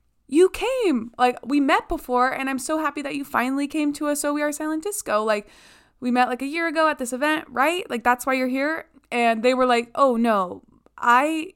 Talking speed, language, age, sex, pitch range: 230 wpm, English, 20-39, female, 205-275 Hz